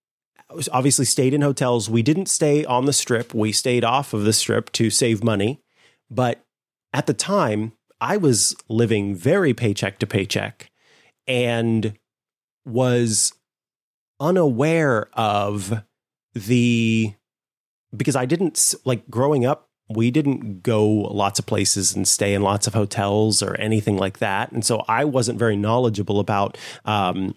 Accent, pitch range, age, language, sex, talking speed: American, 105-135 Hz, 30-49, English, male, 145 wpm